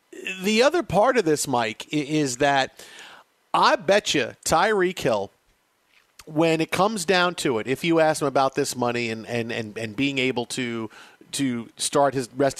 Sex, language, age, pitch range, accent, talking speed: male, English, 50-69, 140-215 Hz, American, 175 wpm